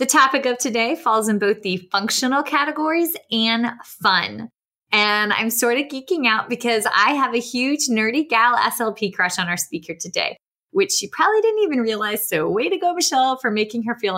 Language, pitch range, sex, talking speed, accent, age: English, 195-270 Hz, female, 195 wpm, American, 20-39